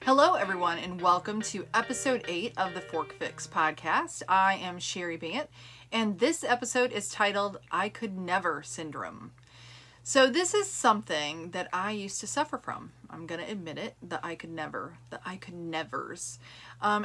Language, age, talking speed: English, 30-49, 170 wpm